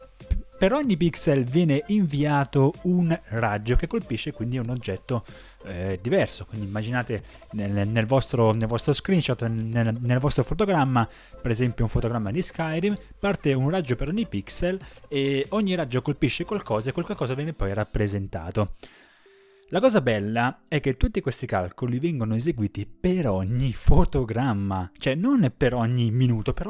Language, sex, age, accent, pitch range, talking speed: Italian, male, 20-39, native, 115-180 Hz, 150 wpm